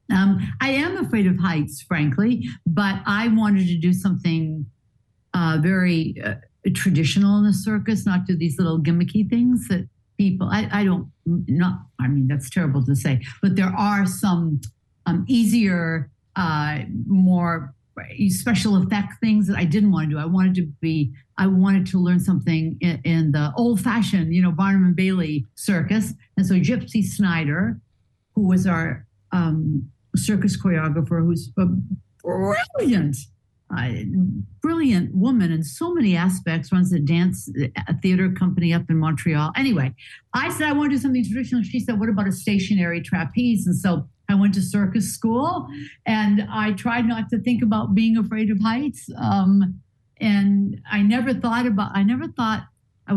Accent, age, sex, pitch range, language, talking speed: American, 60-79, female, 160-205 Hz, English, 165 wpm